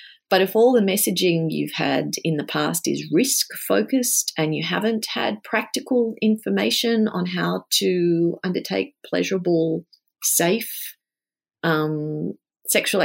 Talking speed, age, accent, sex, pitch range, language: 125 wpm, 40-59, Australian, female, 160-225 Hz, English